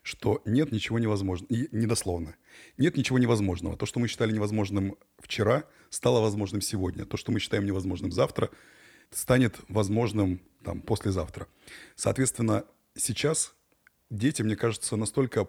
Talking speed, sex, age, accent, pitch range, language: 130 wpm, male, 30-49, native, 95-115 Hz, Russian